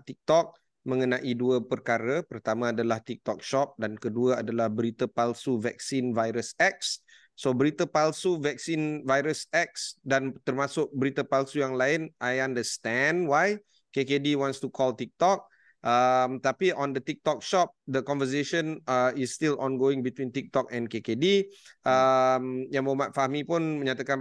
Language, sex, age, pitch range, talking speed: Malay, male, 30-49, 125-155 Hz, 145 wpm